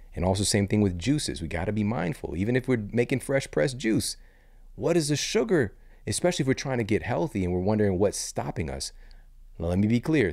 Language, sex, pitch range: English, male, 85-110 Hz